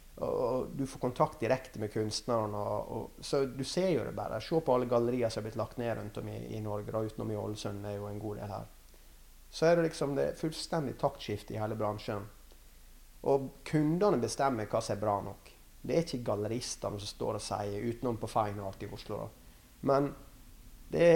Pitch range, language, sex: 105-140 Hz, English, male